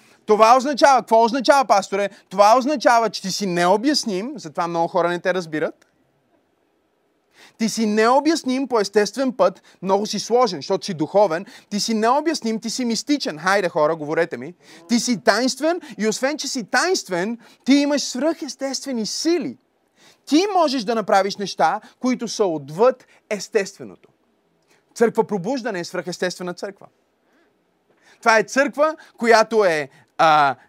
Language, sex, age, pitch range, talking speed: Bulgarian, male, 30-49, 185-245 Hz, 140 wpm